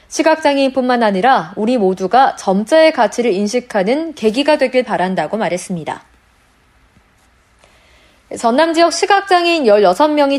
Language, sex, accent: Korean, female, native